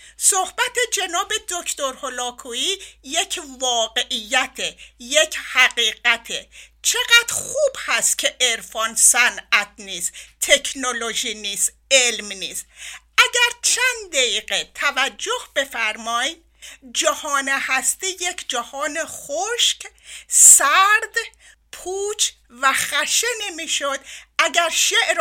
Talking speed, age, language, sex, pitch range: 85 wpm, 50-69, Persian, female, 235-335 Hz